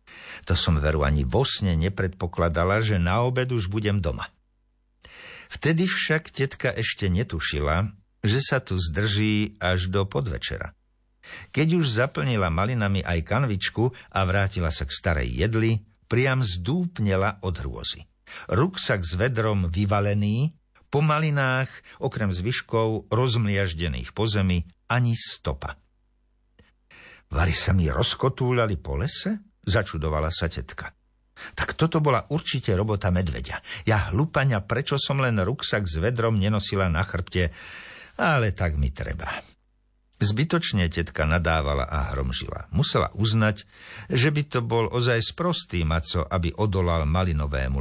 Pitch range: 85-120 Hz